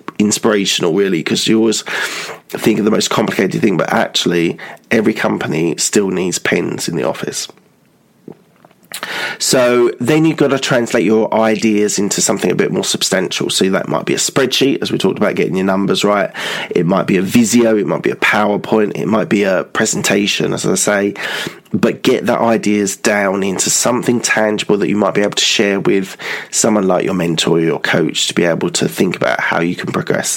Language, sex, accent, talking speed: English, male, British, 200 wpm